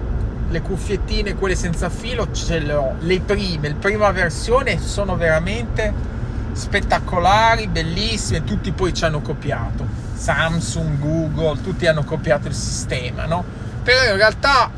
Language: Italian